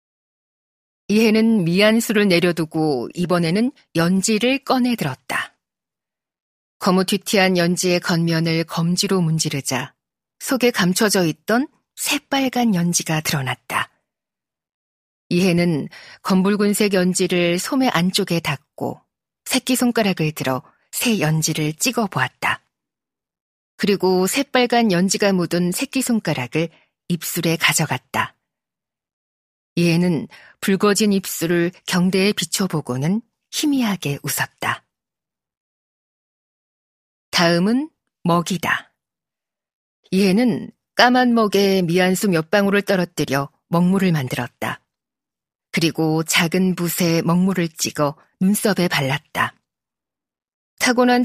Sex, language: female, Korean